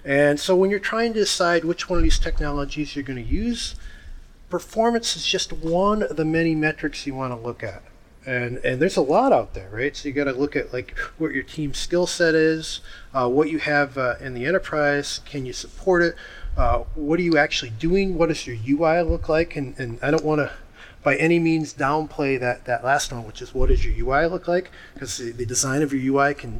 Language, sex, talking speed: English, male, 235 wpm